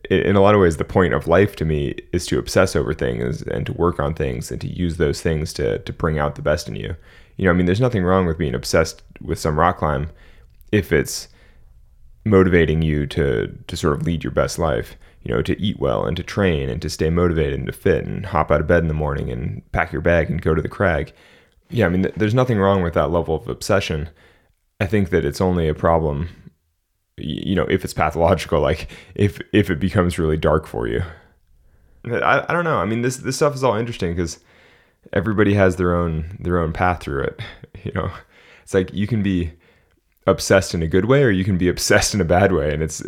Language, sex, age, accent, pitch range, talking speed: English, male, 10-29, American, 80-95 Hz, 235 wpm